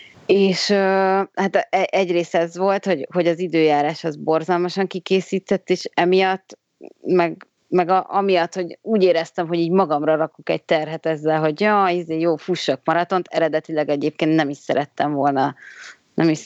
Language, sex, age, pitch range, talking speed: Hungarian, female, 30-49, 155-180 Hz, 150 wpm